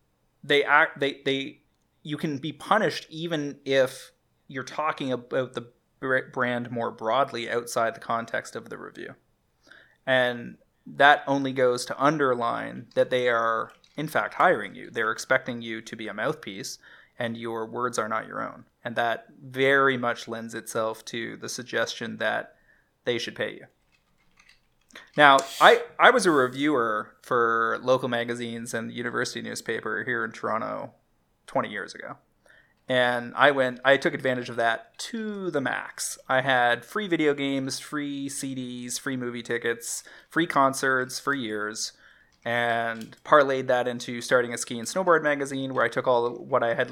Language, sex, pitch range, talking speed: English, male, 120-140 Hz, 160 wpm